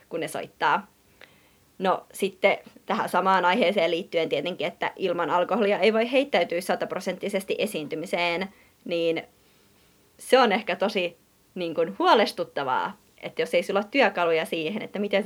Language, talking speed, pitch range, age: Finnish, 135 wpm, 175-220 Hz, 30-49